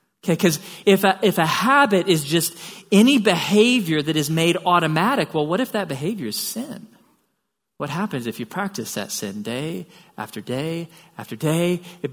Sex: male